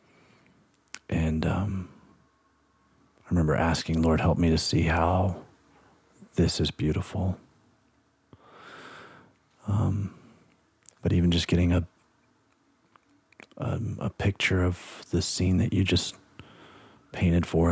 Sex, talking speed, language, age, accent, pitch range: male, 105 wpm, English, 40-59, American, 80-95 Hz